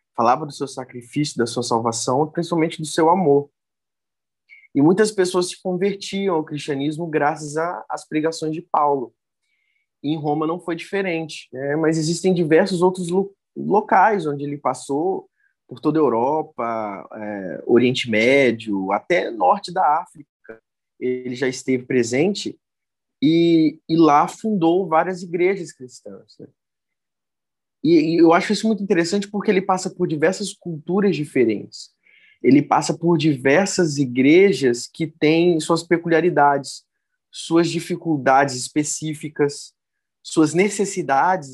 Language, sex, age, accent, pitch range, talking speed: Portuguese, male, 20-39, Brazilian, 140-185 Hz, 125 wpm